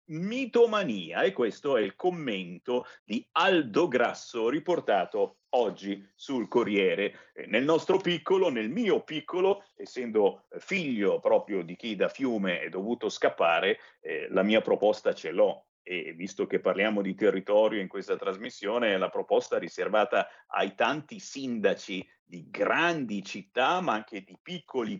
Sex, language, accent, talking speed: male, Italian, native, 140 wpm